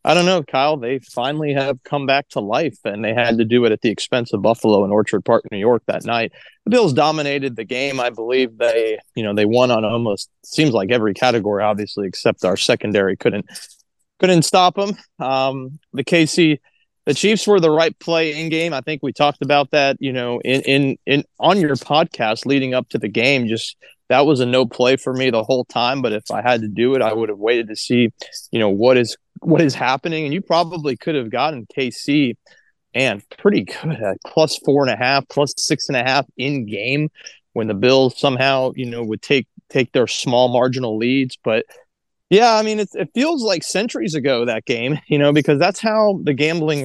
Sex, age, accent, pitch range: male, 20-39, American, 120-150 Hz